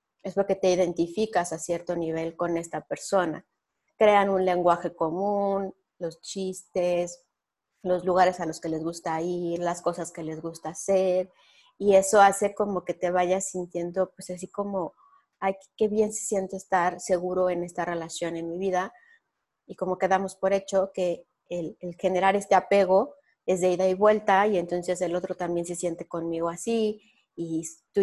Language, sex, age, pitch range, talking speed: Spanish, female, 30-49, 170-200 Hz, 175 wpm